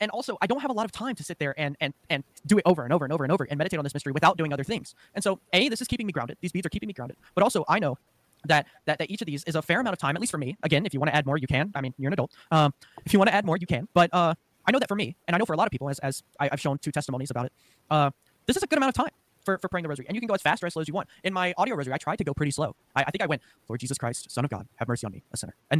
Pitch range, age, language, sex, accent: 145-185 Hz, 20-39, English, male, American